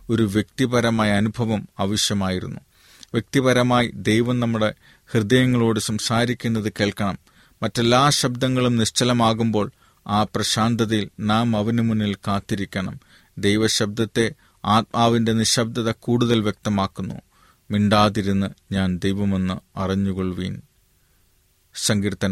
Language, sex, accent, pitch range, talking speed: Malayalam, male, native, 100-115 Hz, 80 wpm